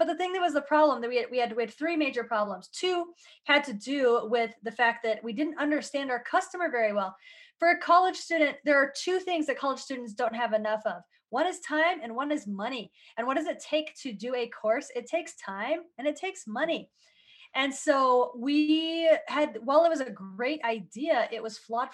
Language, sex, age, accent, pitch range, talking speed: English, female, 20-39, American, 210-300 Hz, 225 wpm